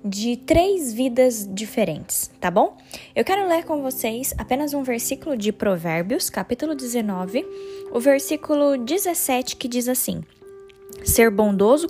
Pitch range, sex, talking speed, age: 210-285 Hz, female, 130 wpm, 10-29